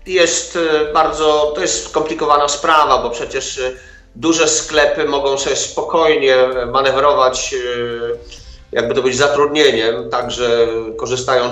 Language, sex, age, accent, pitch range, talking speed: Polish, male, 40-59, native, 120-155 Hz, 105 wpm